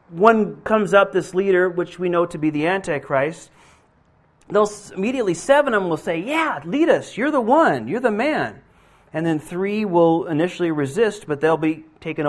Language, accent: Finnish, American